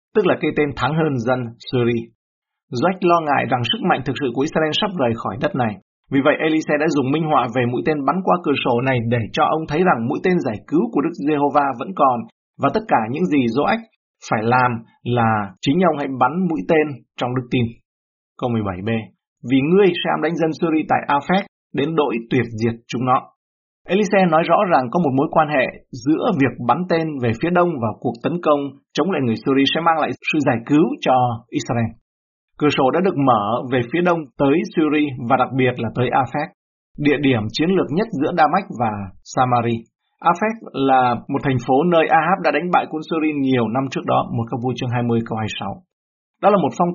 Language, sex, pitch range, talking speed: Vietnamese, male, 120-160 Hz, 220 wpm